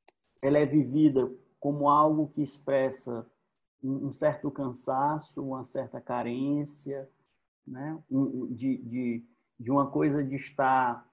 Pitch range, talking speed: 125-150 Hz, 115 wpm